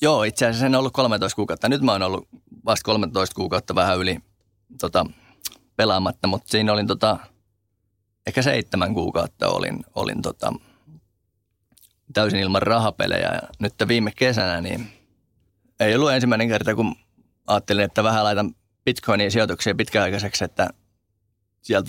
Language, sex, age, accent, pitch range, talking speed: Finnish, male, 20-39, native, 100-110 Hz, 140 wpm